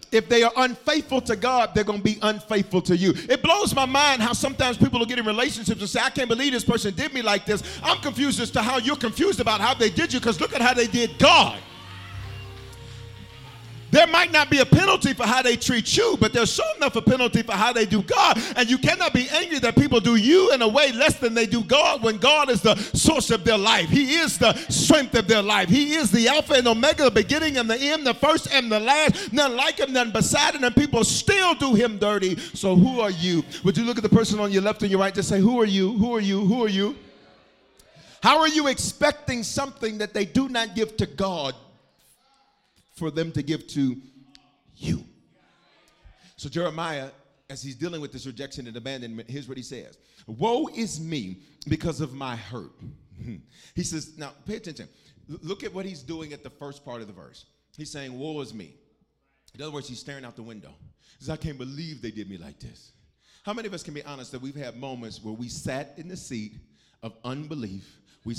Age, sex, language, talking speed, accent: 50-69, male, English, 230 wpm, American